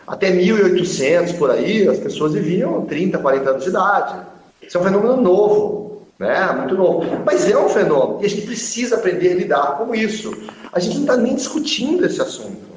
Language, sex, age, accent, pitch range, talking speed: Portuguese, male, 40-59, Brazilian, 145-215 Hz, 195 wpm